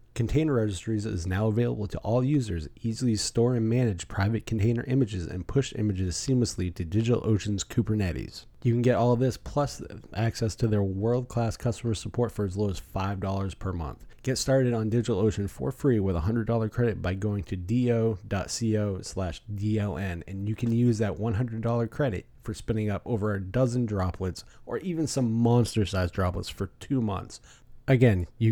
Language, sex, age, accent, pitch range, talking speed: English, male, 30-49, American, 95-120 Hz, 170 wpm